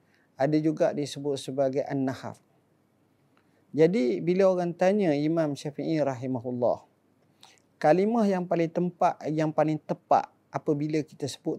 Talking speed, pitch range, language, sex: 115 wpm, 130-165 Hz, Malay, male